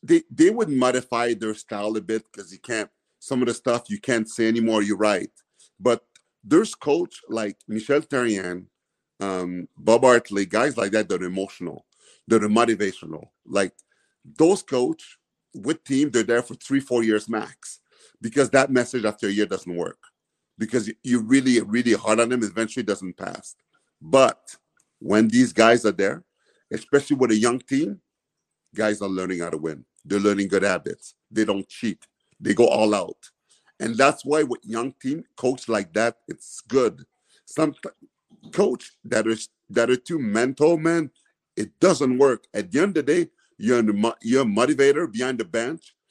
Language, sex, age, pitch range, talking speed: English, male, 50-69, 110-145 Hz, 170 wpm